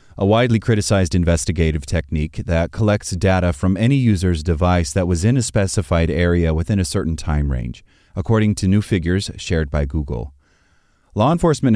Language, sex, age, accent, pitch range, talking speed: English, male, 30-49, American, 80-105 Hz, 165 wpm